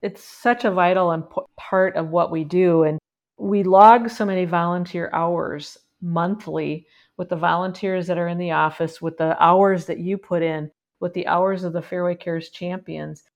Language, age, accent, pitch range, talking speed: English, 50-69, American, 165-185 Hz, 180 wpm